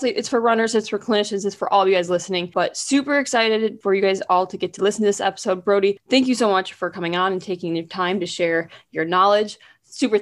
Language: English